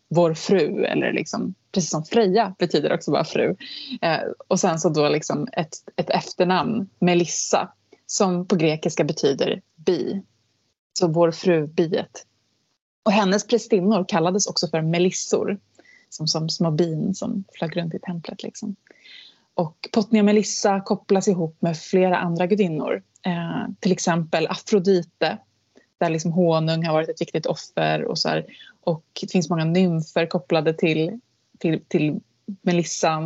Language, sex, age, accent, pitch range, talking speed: Swedish, female, 20-39, native, 170-210 Hz, 145 wpm